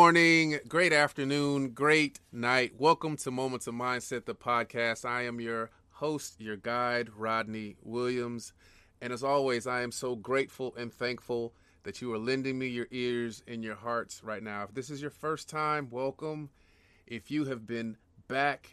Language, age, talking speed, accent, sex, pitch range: English, 30-49, 175 wpm, American, male, 115-140 Hz